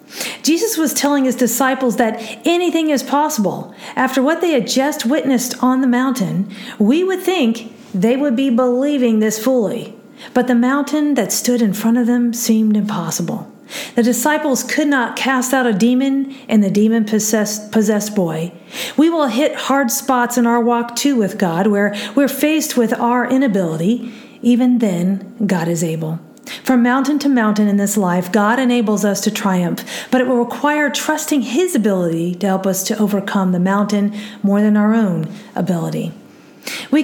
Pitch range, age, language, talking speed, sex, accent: 210-265 Hz, 40-59, English, 170 wpm, female, American